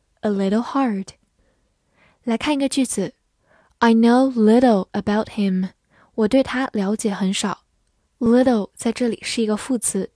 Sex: female